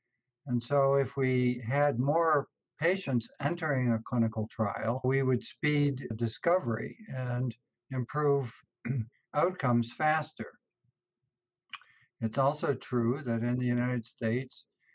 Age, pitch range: 60-79, 115-130 Hz